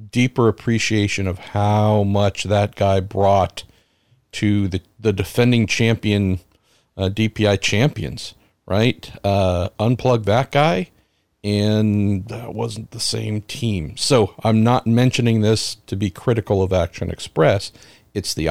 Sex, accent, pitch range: male, American, 95-115 Hz